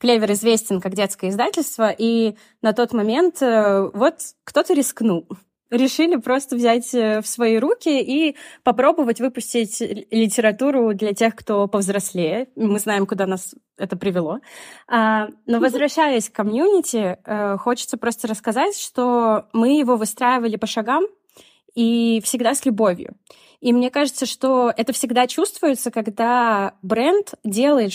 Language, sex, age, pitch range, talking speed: Russian, female, 20-39, 205-250 Hz, 125 wpm